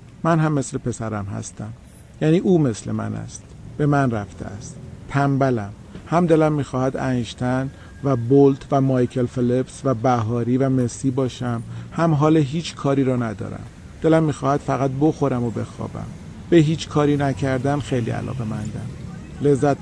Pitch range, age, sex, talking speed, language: 115-140 Hz, 40-59, male, 150 wpm, Persian